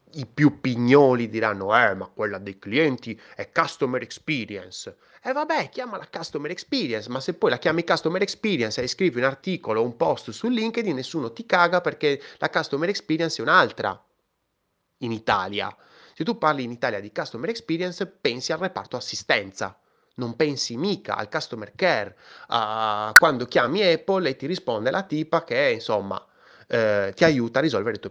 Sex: male